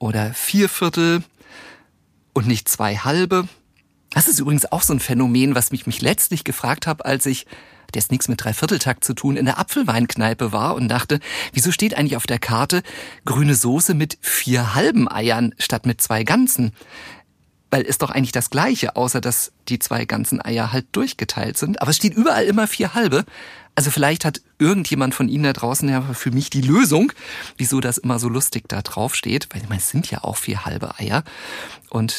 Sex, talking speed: male, 190 wpm